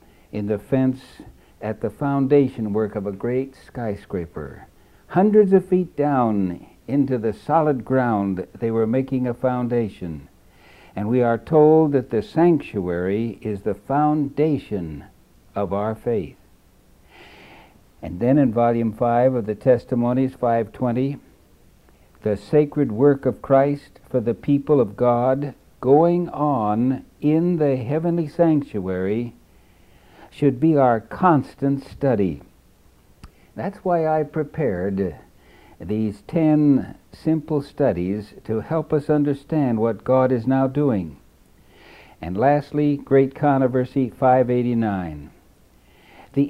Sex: male